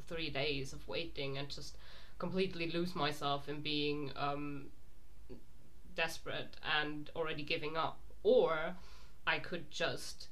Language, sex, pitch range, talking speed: English, female, 150-175 Hz, 120 wpm